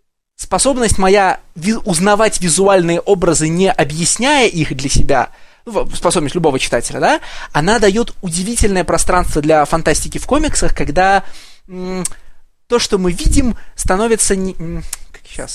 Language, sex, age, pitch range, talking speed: Russian, male, 20-39, 170-220 Hz, 110 wpm